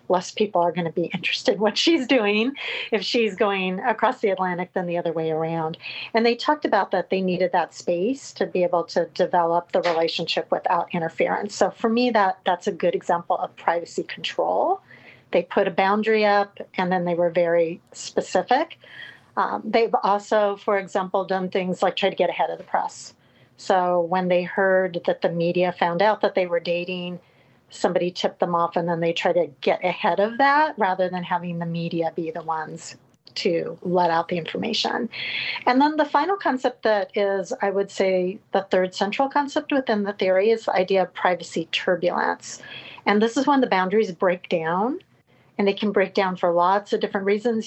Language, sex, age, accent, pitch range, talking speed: English, female, 40-59, American, 180-210 Hz, 200 wpm